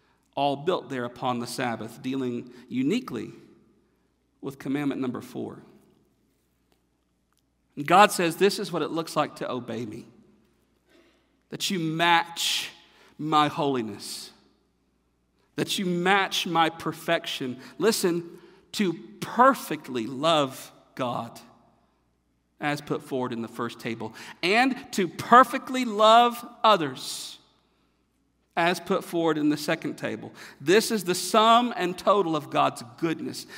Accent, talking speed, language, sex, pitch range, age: American, 120 wpm, English, male, 135-195 Hz, 50-69